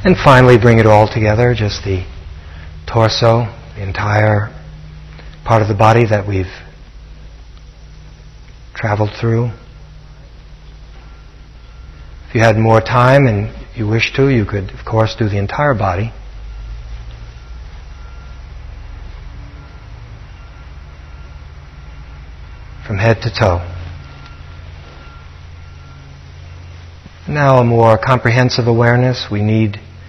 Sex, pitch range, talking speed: male, 95-120 Hz, 95 wpm